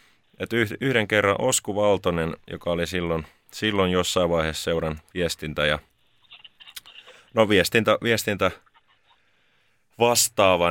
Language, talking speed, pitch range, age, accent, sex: Finnish, 90 wpm, 85-110 Hz, 30-49, native, male